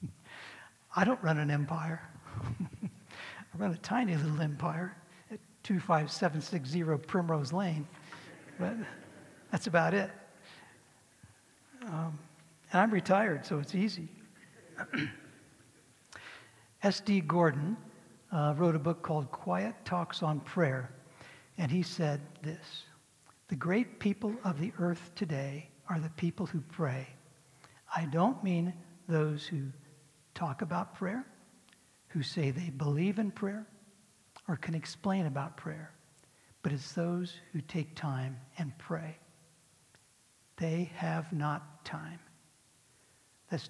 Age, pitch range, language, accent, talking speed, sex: 60-79, 150-185 Hz, English, American, 115 wpm, male